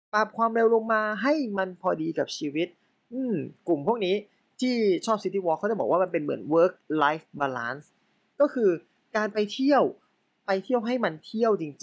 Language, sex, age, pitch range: Thai, male, 20-39, 150-225 Hz